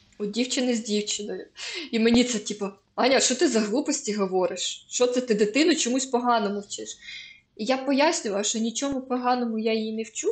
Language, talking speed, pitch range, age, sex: Ukrainian, 180 wpm, 205-245 Hz, 20-39, female